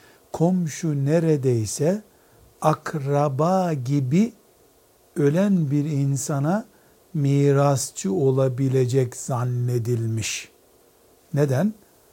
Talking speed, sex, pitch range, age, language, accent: 55 wpm, male, 135-175 Hz, 60-79, Turkish, native